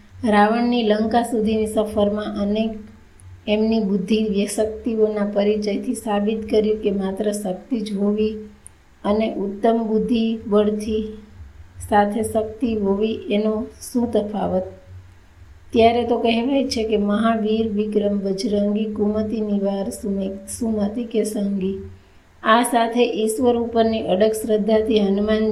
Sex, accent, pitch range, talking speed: female, native, 205-225 Hz, 90 wpm